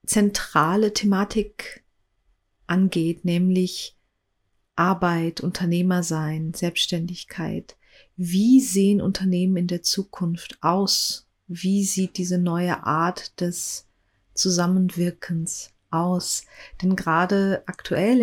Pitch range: 165-190 Hz